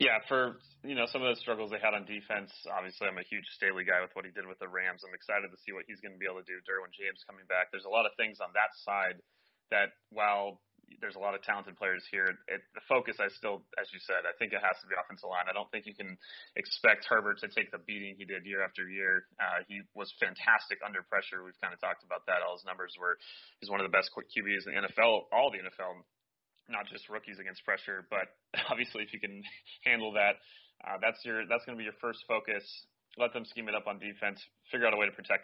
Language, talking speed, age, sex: English, 260 wpm, 20-39, male